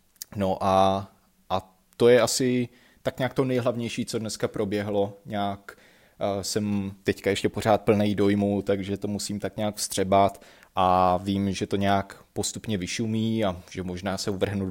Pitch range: 95-110 Hz